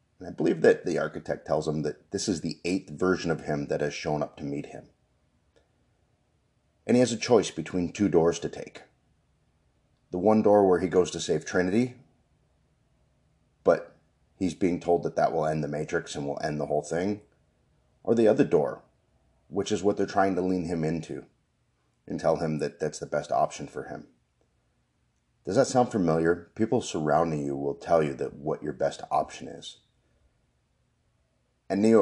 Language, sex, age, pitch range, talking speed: English, male, 30-49, 75-105 Hz, 185 wpm